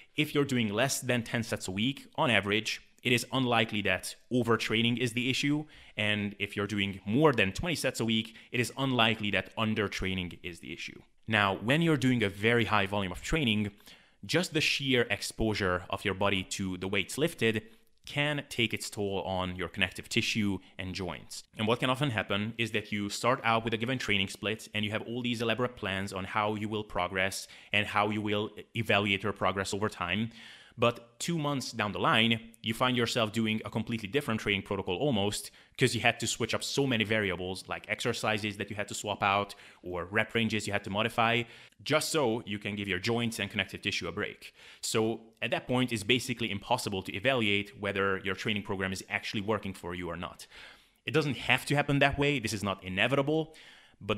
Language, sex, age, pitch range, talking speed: English, male, 20-39, 100-120 Hz, 210 wpm